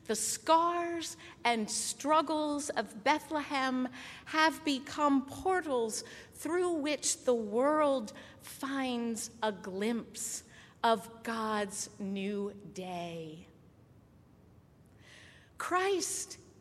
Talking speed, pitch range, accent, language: 75 wpm, 220-315 Hz, American, English